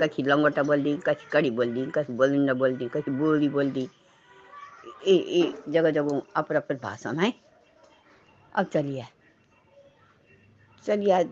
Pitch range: 165-240 Hz